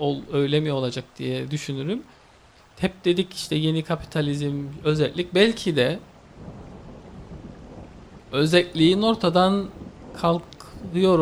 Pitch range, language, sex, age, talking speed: 125-165 Hz, English, male, 50-69, 85 wpm